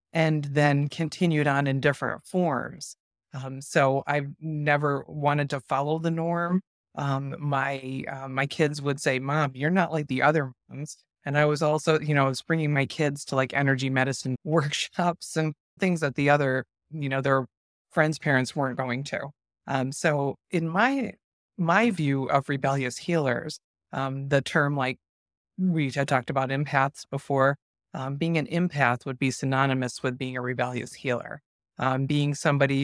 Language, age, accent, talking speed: English, 30-49, American, 170 wpm